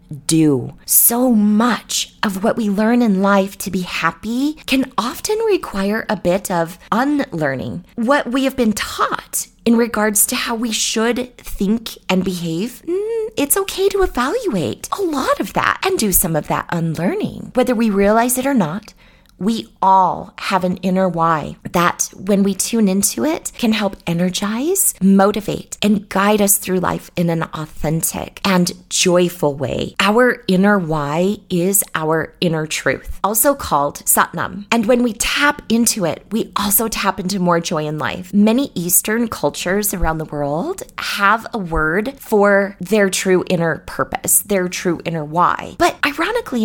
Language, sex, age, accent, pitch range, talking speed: English, female, 30-49, American, 175-235 Hz, 160 wpm